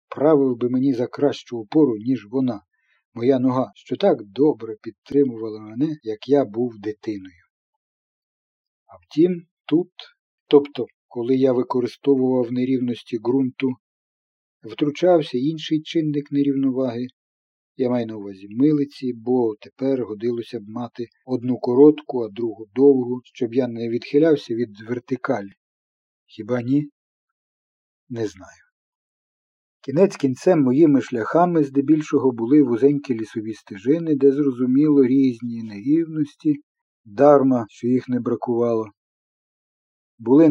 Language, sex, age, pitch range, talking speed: Ukrainian, male, 50-69, 120-145 Hz, 115 wpm